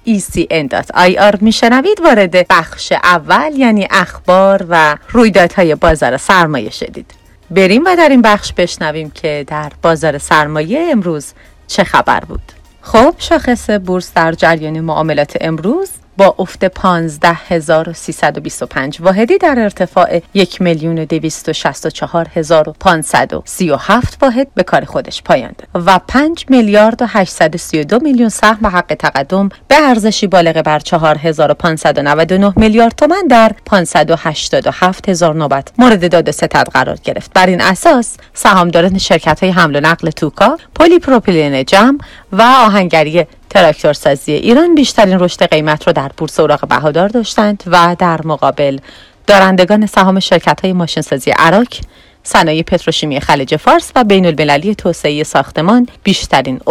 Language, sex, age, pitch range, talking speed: Persian, female, 30-49, 160-215 Hz, 130 wpm